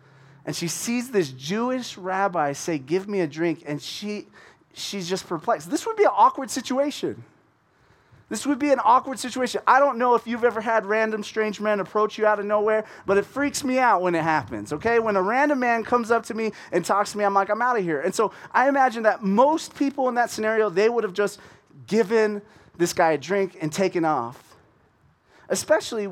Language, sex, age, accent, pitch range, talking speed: English, male, 30-49, American, 165-225 Hz, 215 wpm